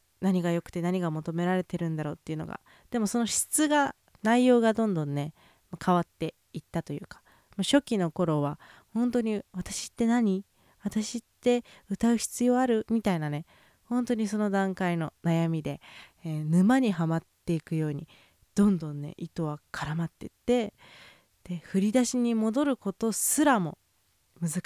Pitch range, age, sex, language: 165-230 Hz, 20-39, female, Japanese